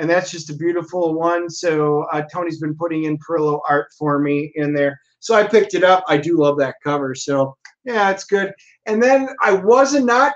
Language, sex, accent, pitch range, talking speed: English, male, American, 150-195 Hz, 215 wpm